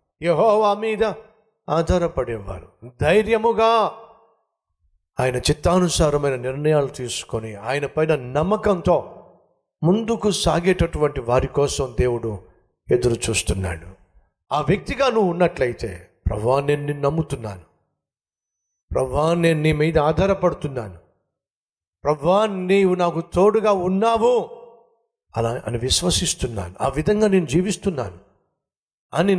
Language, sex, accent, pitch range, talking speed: Telugu, male, native, 110-180 Hz, 90 wpm